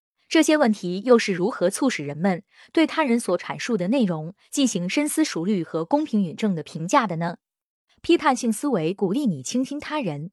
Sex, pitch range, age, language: female, 180-270 Hz, 20-39, Chinese